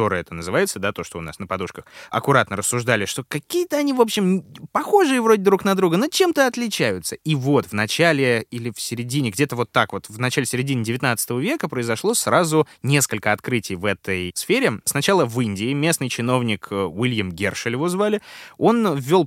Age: 20-39